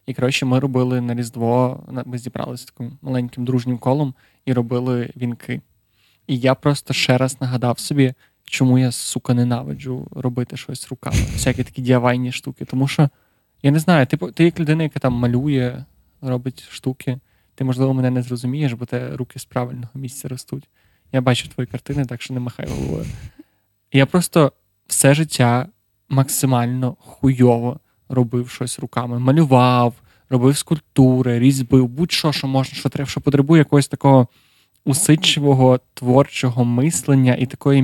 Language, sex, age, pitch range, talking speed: Ukrainian, male, 20-39, 125-140 Hz, 150 wpm